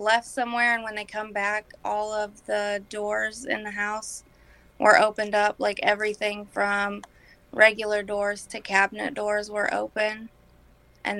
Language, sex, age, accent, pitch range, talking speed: English, female, 20-39, American, 205-225 Hz, 150 wpm